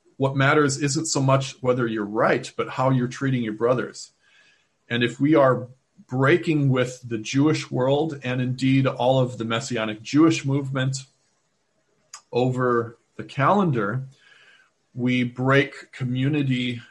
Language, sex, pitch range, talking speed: English, male, 120-155 Hz, 130 wpm